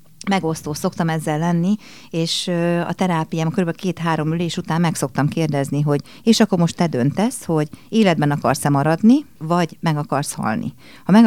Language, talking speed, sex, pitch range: Hungarian, 160 wpm, female, 150-190 Hz